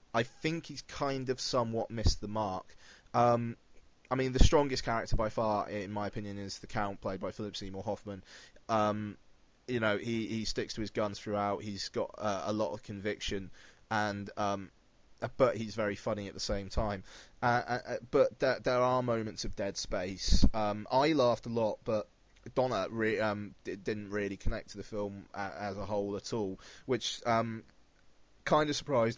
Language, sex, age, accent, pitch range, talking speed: English, male, 20-39, British, 100-115 Hz, 190 wpm